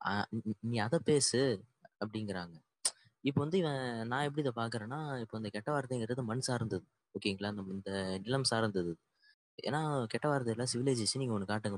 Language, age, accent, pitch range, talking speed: Tamil, 20-39, native, 110-145 Hz, 145 wpm